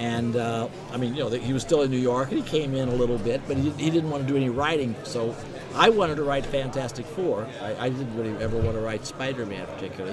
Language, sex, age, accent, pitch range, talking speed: English, male, 60-79, American, 120-150 Hz, 265 wpm